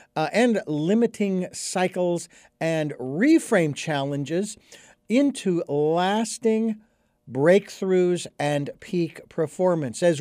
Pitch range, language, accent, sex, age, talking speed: 150-195 Hz, English, American, male, 50-69, 80 wpm